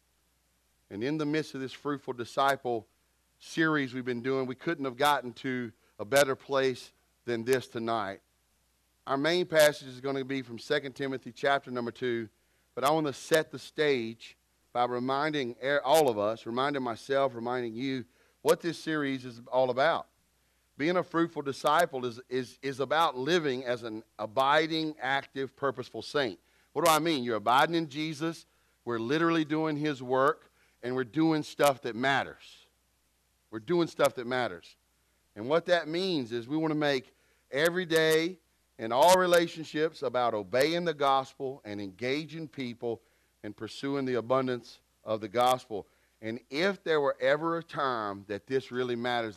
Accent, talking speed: American, 165 wpm